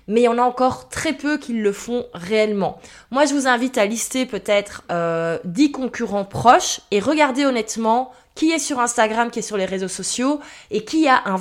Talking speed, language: 210 wpm, French